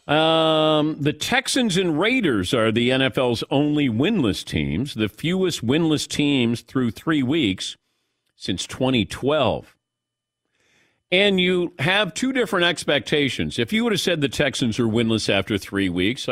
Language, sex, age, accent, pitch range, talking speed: English, male, 50-69, American, 105-150 Hz, 140 wpm